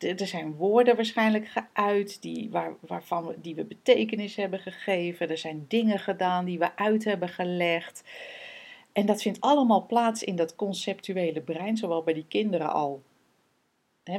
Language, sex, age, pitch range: Dutch, female, 40-59, 170-215 Hz